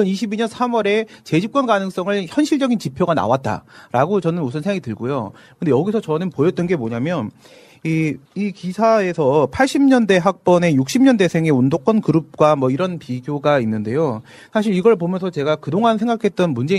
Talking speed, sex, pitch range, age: 130 wpm, male, 150-225 Hz, 40-59